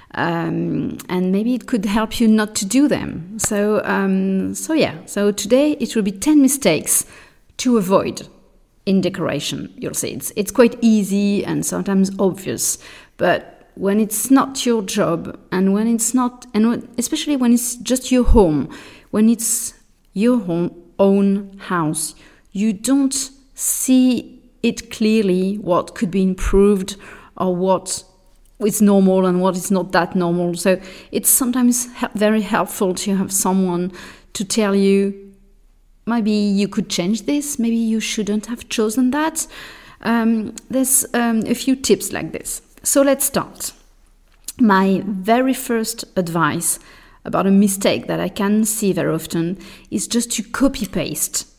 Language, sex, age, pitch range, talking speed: English, female, 40-59, 190-235 Hz, 150 wpm